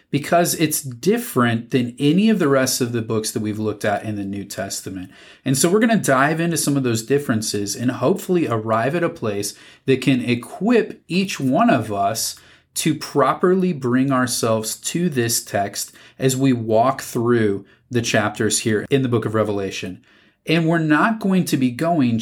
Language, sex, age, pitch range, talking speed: English, male, 30-49, 110-145 Hz, 185 wpm